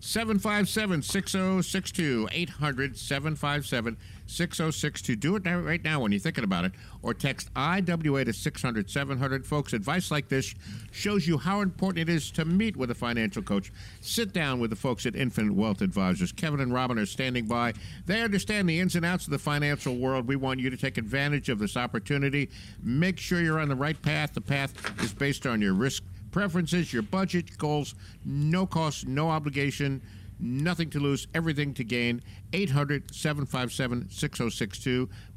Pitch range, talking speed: 115-170 Hz, 160 wpm